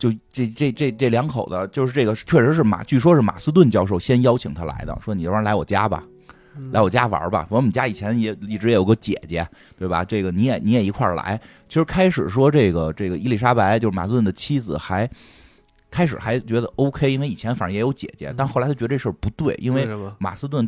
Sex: male